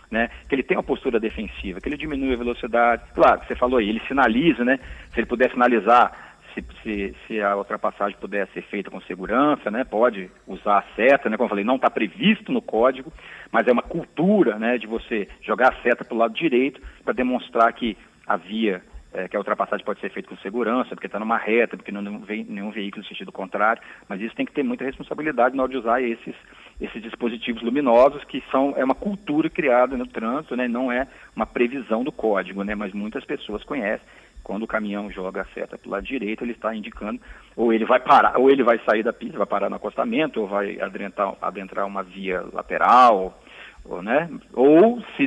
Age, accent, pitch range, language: 40-59, Brazilian, 105-145 Hz, Portuguese